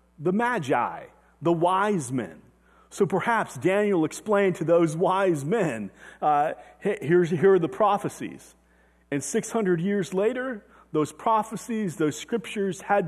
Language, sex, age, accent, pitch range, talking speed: English, male, 30-49, American, 150-200 Hz, 125 wpm